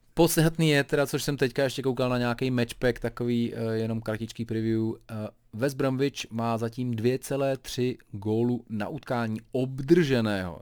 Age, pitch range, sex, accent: 30-49, 110-130 Hz, male, native